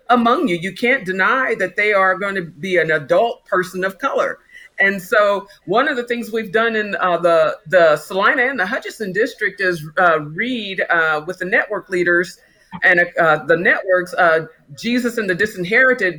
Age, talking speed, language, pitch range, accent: 50-69, 185 wpm, English, 180-240 Hz, American